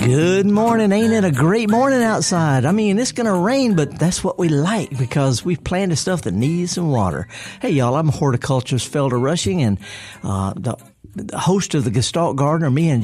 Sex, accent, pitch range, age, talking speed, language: male, American, 125-170 Hz, 50-69, 205 wpm, English